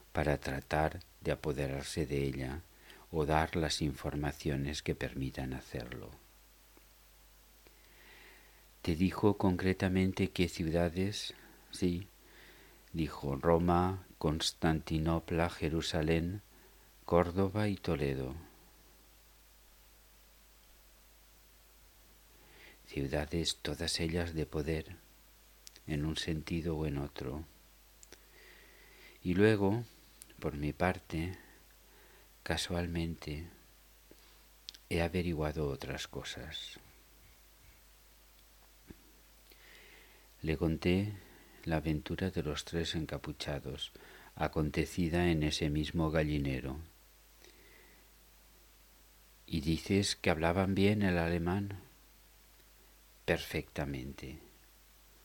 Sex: male